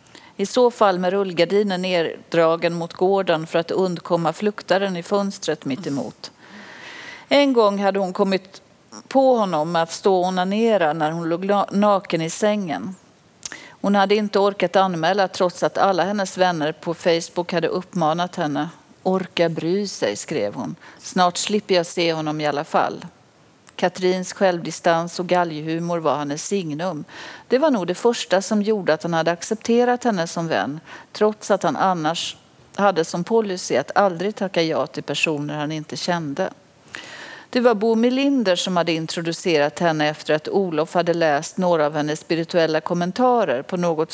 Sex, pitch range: female, 160-205 Hz